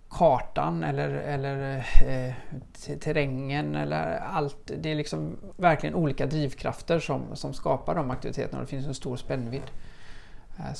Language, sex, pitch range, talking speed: Swedish, male, 125-145 Hz, 145 wpm